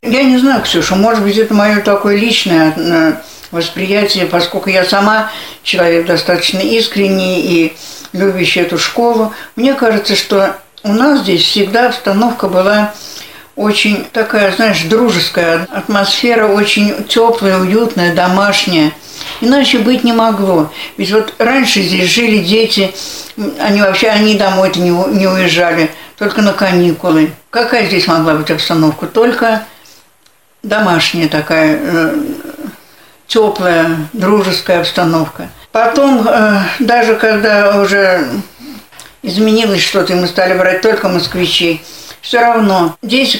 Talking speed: 115 wpm